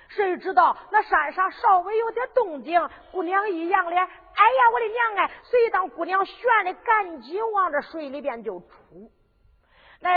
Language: Chinese